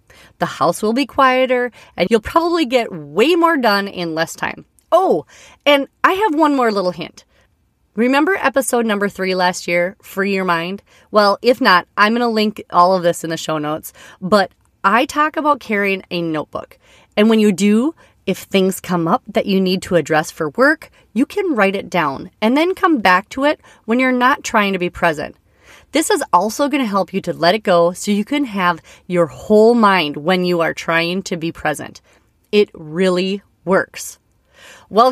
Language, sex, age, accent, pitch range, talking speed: English, female, 30-49, American, 180-255 Hz, 195 wpm